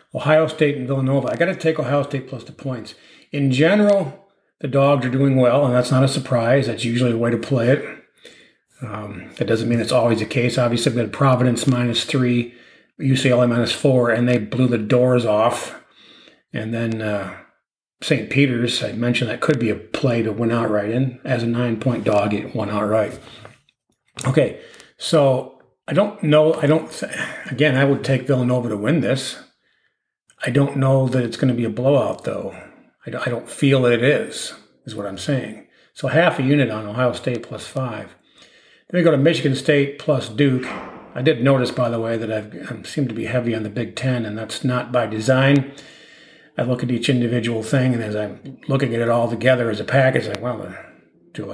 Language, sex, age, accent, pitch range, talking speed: English, male, 40-59, American, 120-140 Hz, 205 wpm